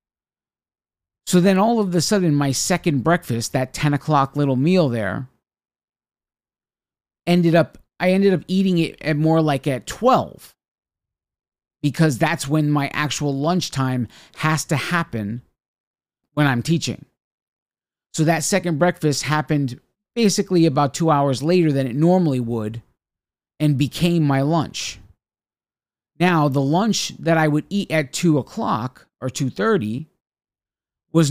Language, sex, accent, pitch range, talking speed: English, male, American, 140-180 Hz, 140 wpm